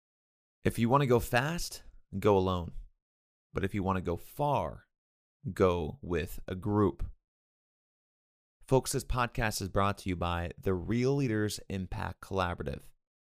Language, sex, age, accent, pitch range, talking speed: English, male, 30-49, American, 85-110 Hz, 135 wpm